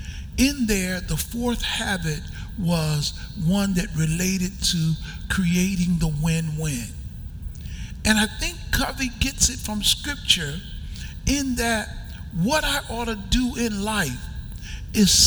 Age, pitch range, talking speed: 60-79, 160-235 Hz, 120 wpm